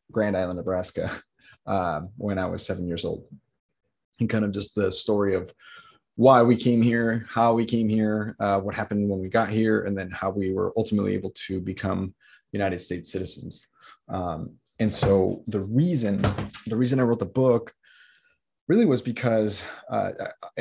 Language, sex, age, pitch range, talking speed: English, male, 20-39, 95-115 Hz, 170 wpm